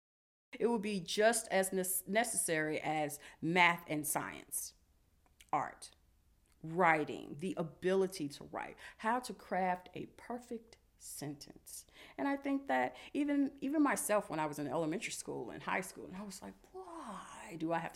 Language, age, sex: English, 40-59, female